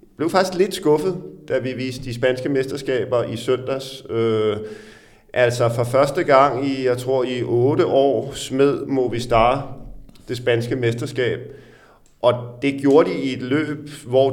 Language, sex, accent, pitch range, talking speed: Danish, male, native, 120-140 Hz, 155 wpm